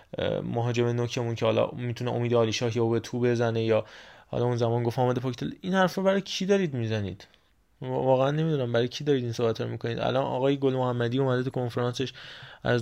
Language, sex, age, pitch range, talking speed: Persian, male, 20-39, 120-145 Hz, 185 wpm